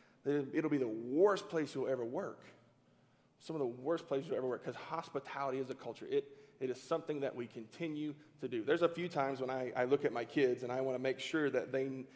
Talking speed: 240 wpm